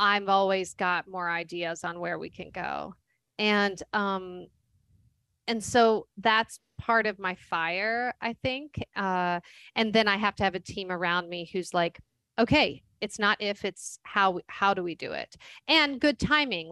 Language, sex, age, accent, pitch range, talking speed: English, female, 30-49, American, 175-210 Hz, 170 wpm